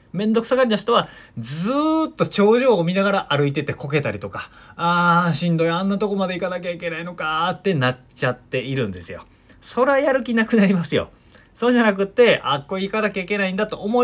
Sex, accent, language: male, native, Japanese